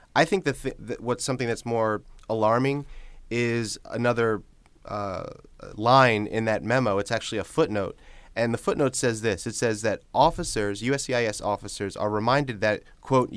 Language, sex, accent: English, male, American